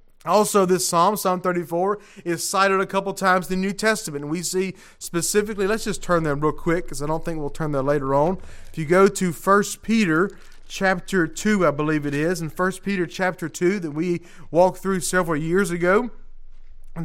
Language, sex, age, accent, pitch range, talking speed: English, male, 30-49, American, 170-200 Hz, 200 wpm